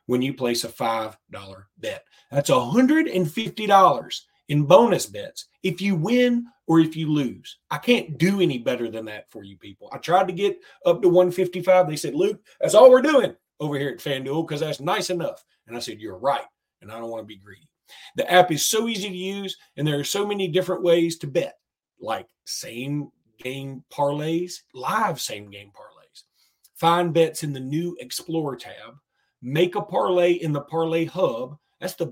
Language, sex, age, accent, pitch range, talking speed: English, male, 40-59, American, 145-205 Hz, 190 wpm